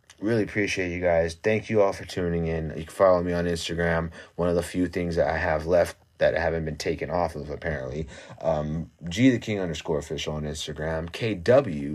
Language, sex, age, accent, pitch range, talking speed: English, male, 30-49, American, 80-115 Hz, 210 wpm